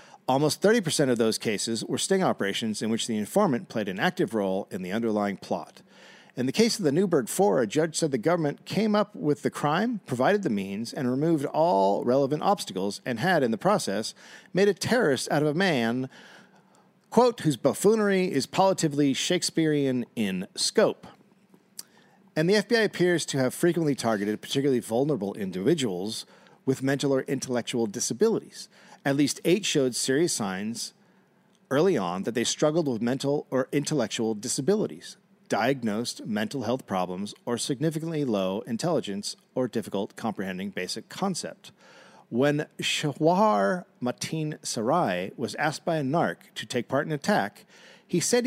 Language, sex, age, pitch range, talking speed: English, male, 50-69, 125-195 Hz, 155 wpm